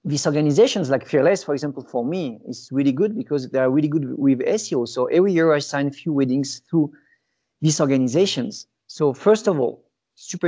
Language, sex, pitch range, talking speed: English, male, 145-185 Hz, 195 wpm